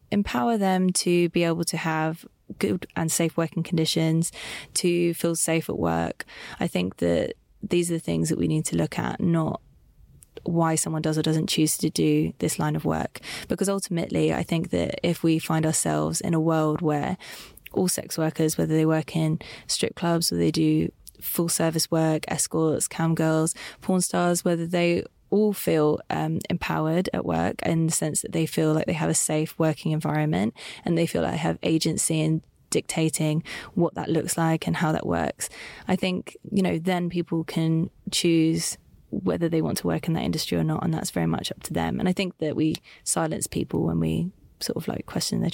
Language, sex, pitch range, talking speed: English, female, 155-185 Hz, 200 wpm